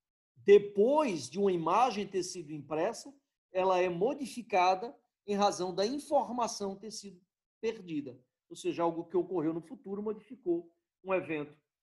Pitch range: 170-230 Hz